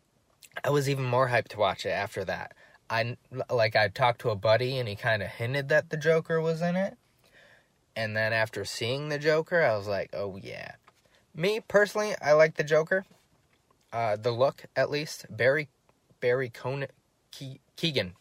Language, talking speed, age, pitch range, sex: English, 180 wpm, 20-39, 115-150 Hz, male